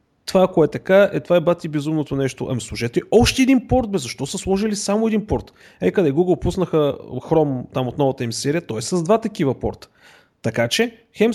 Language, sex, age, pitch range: Bulgarian, male, 30-49, 130-185 Hz